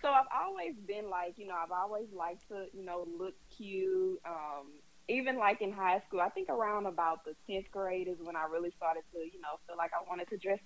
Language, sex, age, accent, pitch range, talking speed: English, female, 20-39, American, 170-215 Hz, 235 wpm